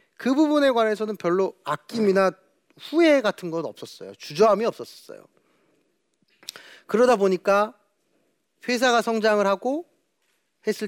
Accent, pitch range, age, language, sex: native, 170-240 Hz, 30-49, Korean, male